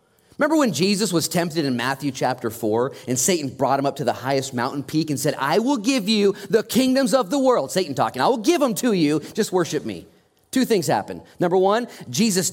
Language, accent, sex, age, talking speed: English, American, male, 30-49, 225 wpm